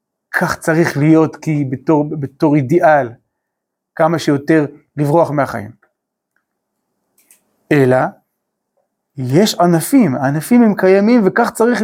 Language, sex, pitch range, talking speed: Hebrew, male, 155-215 Hz, 95 wpm